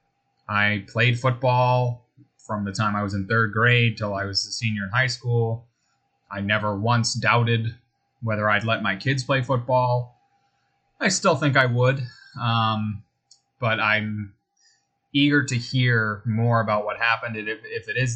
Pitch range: 105-125 Hz